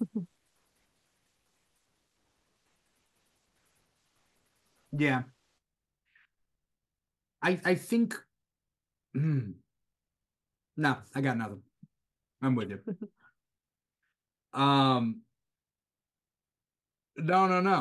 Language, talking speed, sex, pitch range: English, 55 wpm, male, 130-185 Hz